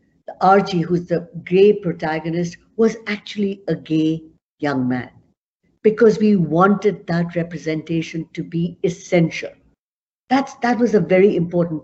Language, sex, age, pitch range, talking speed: English, female, 60-79, 160-210 Hz, 125 wpm